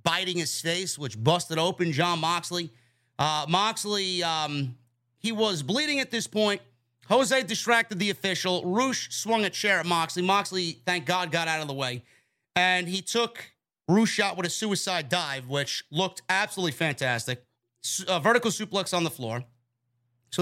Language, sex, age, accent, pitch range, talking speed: English, male, 30-49, American, 140-190 Hz, 160 wpm